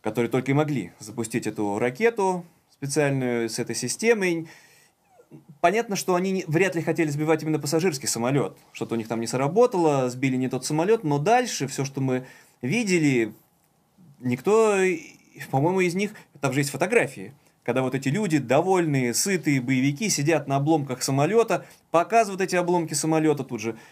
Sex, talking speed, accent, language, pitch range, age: male, 155 wpm, native, Russian, 130-175 Hz, 20-39